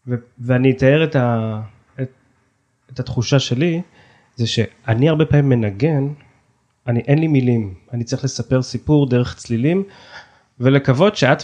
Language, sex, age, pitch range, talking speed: Hebrew, male, 20-39, 115-140 Hz, 135 wpm